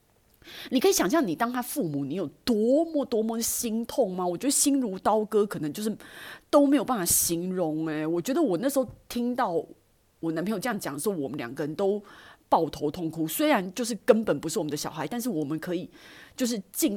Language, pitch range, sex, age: Chinese, 170-275 Hz, female, 30-49